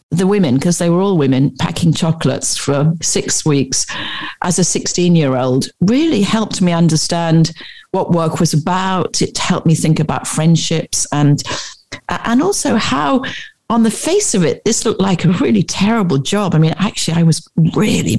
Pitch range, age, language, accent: 160-215 Hz, 50-69, English, British